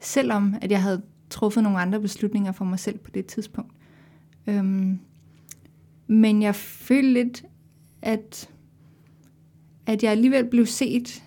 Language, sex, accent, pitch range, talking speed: Danish, female, native, 200-225 Hz, 120 wpm